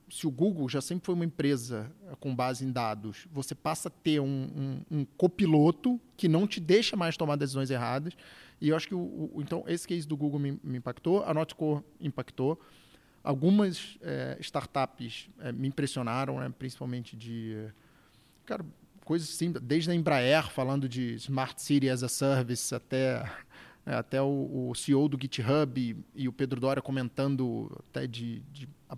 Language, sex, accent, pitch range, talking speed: Portuguese, male, Brazilian, 135-165 Hz, 175 wpm